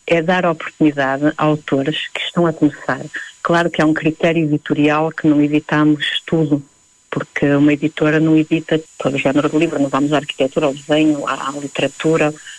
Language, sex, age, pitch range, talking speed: Portuguese, female, 40-59, 150-170 Hz, 175 wpm